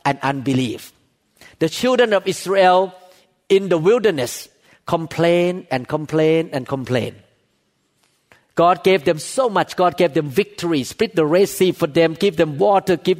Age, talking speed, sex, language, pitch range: 50-69, 150 wpm, male, English, 150-195 Hz